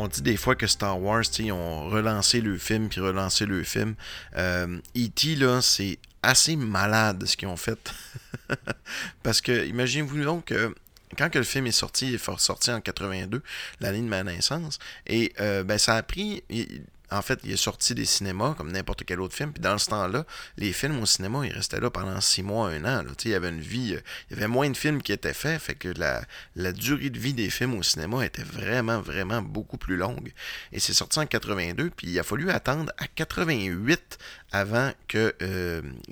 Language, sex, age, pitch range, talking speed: French, male, 30-49, 95-125 Hz, 210 wpm